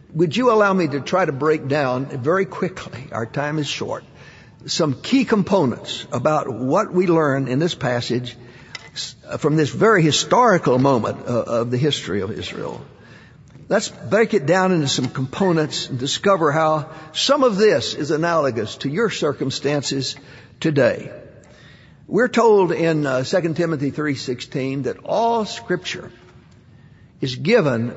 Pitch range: 130-165 Hz